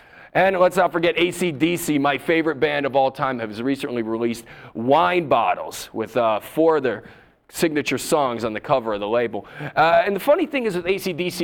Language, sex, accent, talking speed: English, male, American, 195 wpm